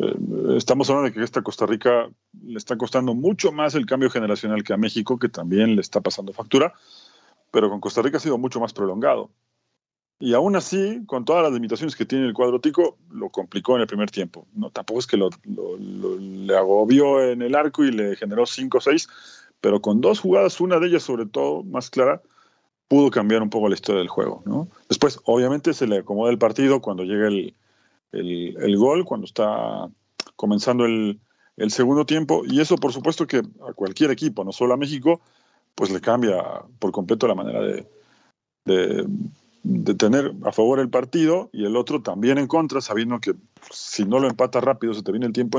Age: 40-59